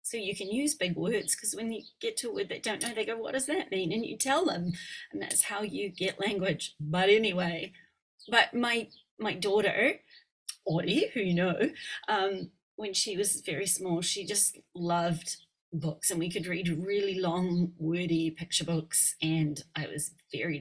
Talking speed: 190 wpm